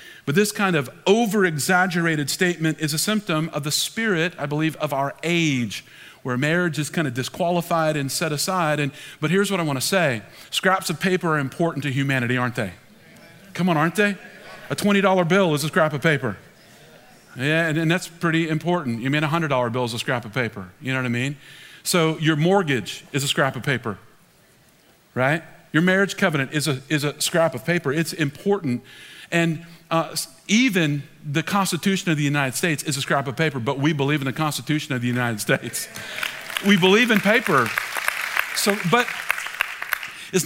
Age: 40-59